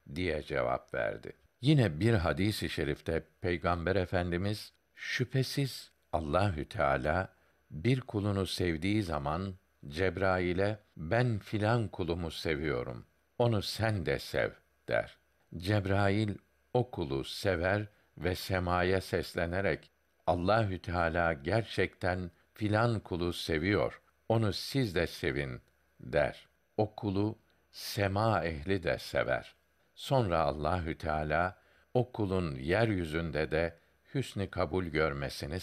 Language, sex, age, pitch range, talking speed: Turkish, male, 60-79, 85-110 Hz, 100 wpm